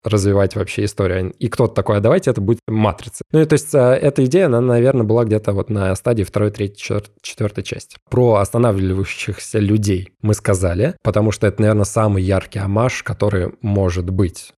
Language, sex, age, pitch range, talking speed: Russian, male, 20-39, 100-125 Hz, 175 wpm